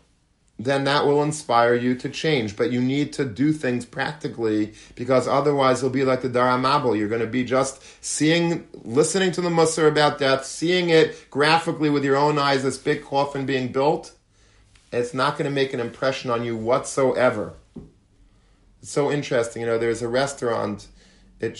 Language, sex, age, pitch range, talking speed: English, male, 40-59, 115-145 Hz, 180 wpm